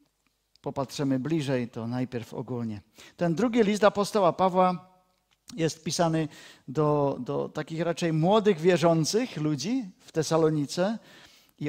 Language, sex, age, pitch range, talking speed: Czech, male, 50-69, 135-180 Hz, 115 wpm